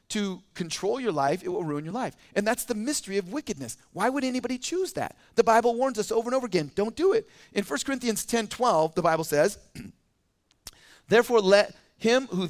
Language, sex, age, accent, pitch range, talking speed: English, male, 40-59, American, 190-250 Hz, 205 wpm